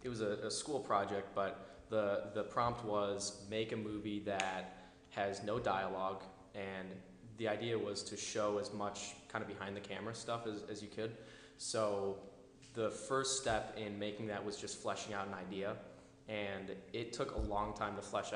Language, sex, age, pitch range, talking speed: English, male, 20-39, 100-110 Hz, 180 wpm